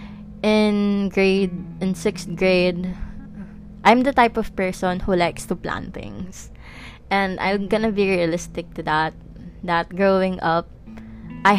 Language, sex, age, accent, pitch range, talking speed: English, female, 20-39, Filipino, 155-195 Hz, 135 wpm